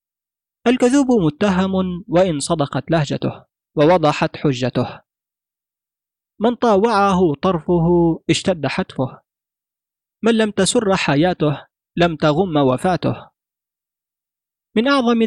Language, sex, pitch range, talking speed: Arabic, male, 150-190 Hz, 85 wpm